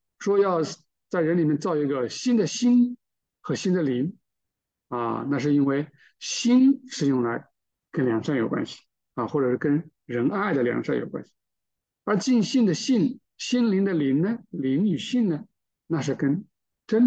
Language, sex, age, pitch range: Chinese, male, 50-69, 135-200 Hz